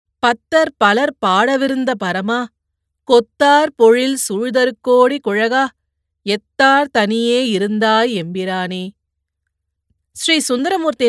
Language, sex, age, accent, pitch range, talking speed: Tamil, female, 30-49, native, 200-245 Hz, 75 wpm